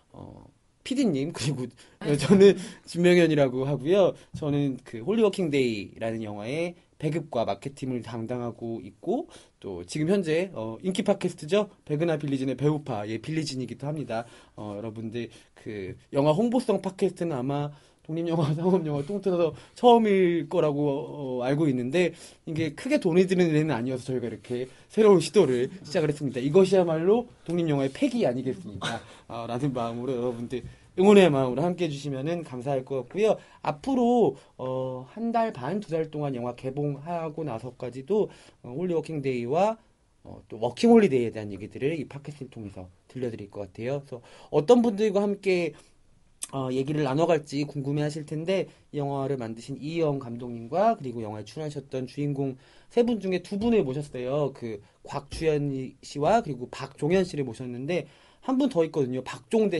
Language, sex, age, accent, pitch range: Korean, male, 20-39, native, 125-180 Hz